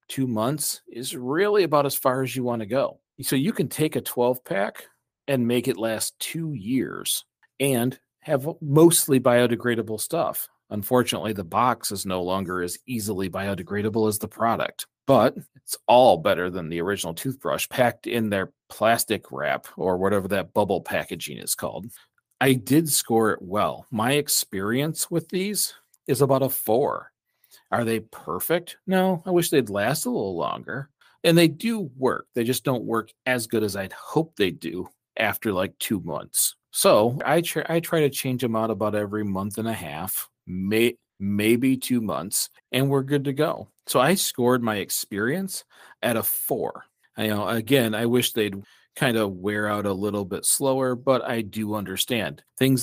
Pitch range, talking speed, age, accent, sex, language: 105-140 Hz, 180 wpm, 40-59, American, male, English